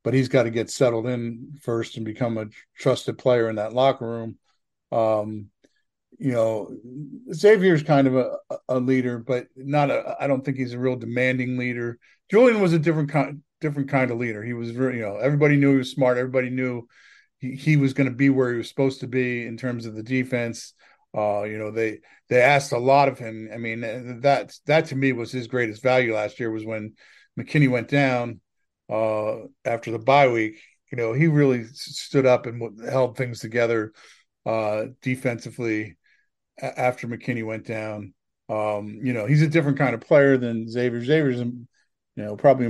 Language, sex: English, male